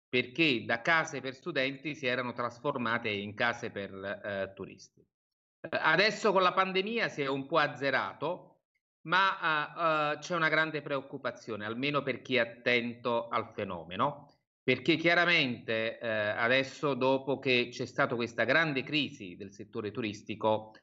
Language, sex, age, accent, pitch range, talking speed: Italian, male, 30-49, native, 120-150 Hz, 145 wpm